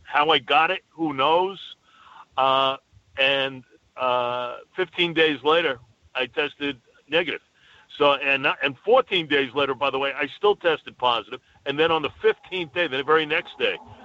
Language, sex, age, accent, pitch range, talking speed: English, male, 50-69, American, 130-170 Hz, 160 wpm